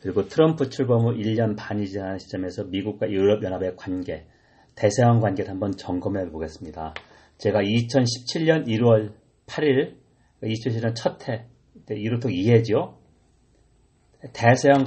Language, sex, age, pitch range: Korean, male, 40-59, 95-125 Hz